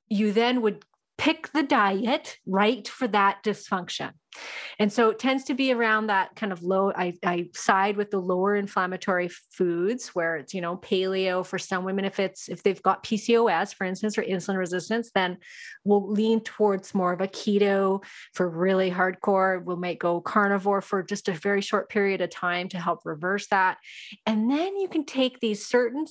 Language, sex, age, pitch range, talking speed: English, female, 30-49, 185-225 Hz, 190 wpm